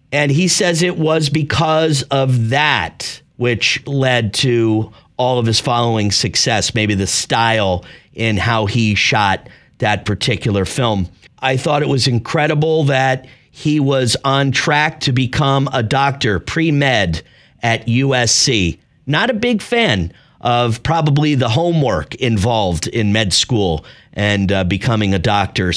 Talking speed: 140 wpm